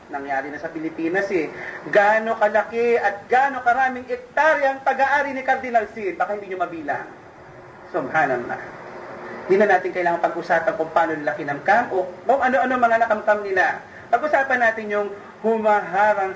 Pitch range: 165-225 Hz